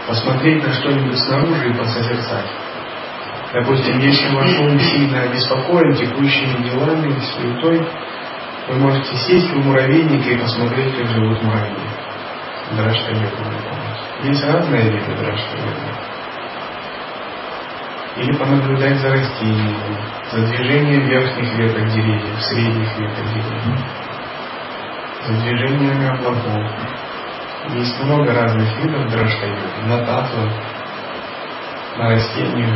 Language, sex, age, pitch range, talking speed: Russian, male, 30-49, 110-135 Hz, 100 wpm